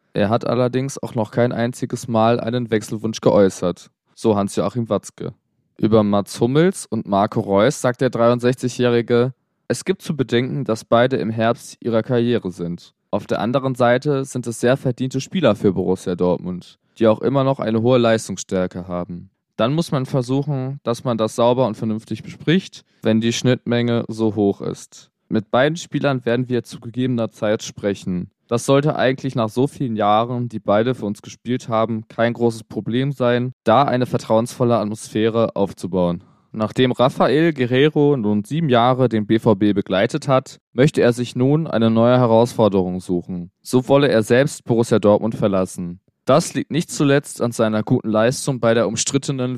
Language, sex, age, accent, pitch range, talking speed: German, male, 20-39, German, 110-130 Hz, 165 wpm